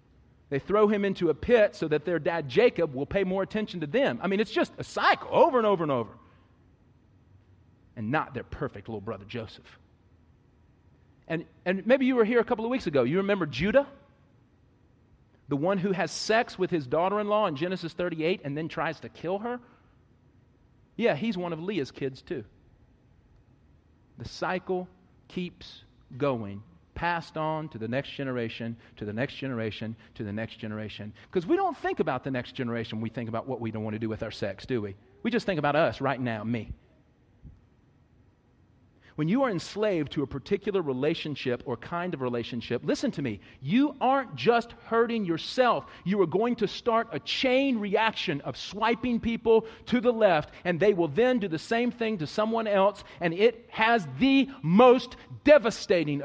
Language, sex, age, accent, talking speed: English, male, 40-59, American, 185 wpm